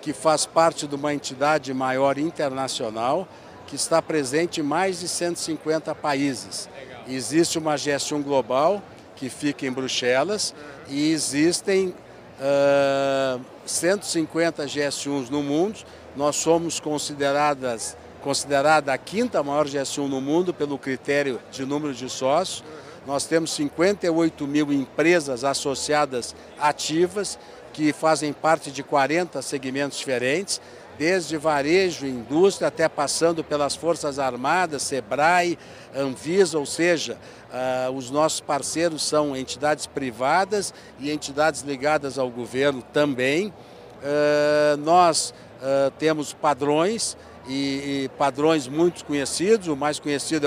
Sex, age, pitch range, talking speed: male, 60-79, 135-160 Hz, 110 wpm